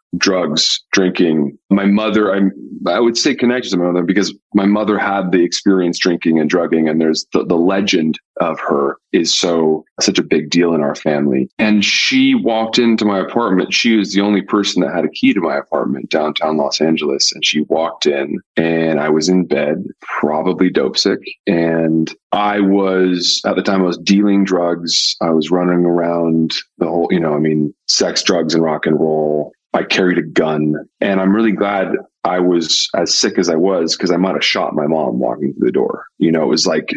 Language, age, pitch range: English, 30-49, 80-100 Hz